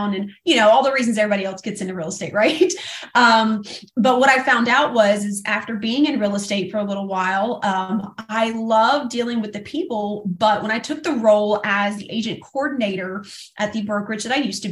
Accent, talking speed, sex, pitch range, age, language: American, 220 wpm, female, 195-230 Hz, 30-49, English